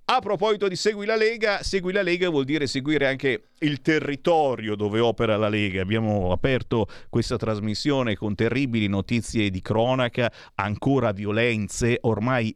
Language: Italian